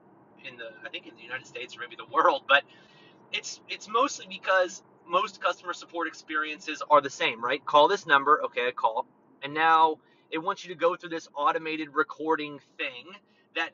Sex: male